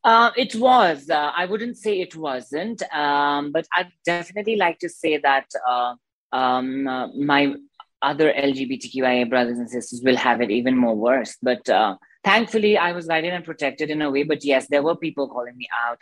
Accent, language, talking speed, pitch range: native, Hindi, 190 wpm, 135-180 Hz